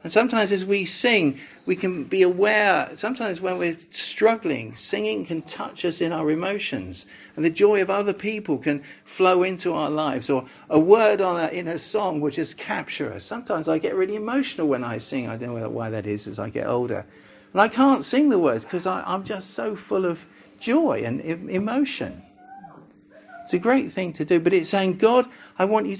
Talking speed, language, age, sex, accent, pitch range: 200 wpm, English, 50-69, male, British, 130-200 Hz